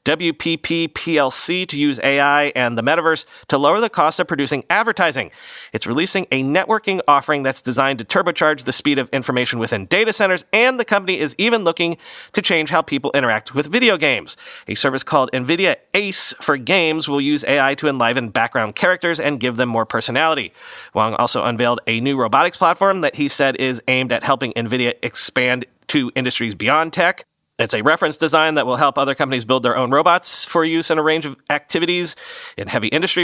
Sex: male